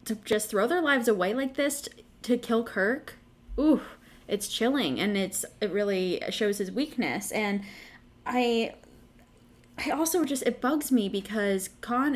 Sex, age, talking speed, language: female, 10-29, 160 wpm, English